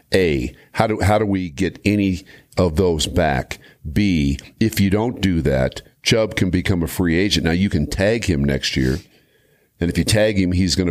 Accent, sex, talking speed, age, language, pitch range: American, male, 205 wpm, 50-69, English, 80-95 Hz